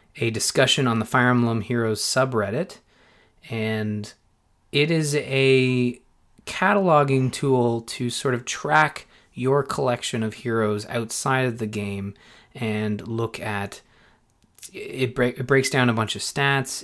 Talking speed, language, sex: 135 wpm, English, male